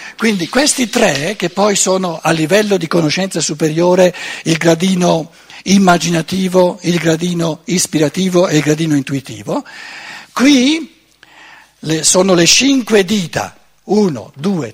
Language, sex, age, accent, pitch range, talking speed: Italian, male, 60-79, native, 160-225 Hz, 115 wpm